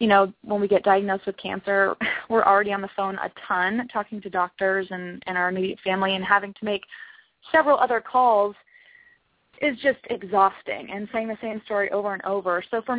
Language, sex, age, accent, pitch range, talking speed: English, female, 20-39, American, 195-250 Hz, 200 wpm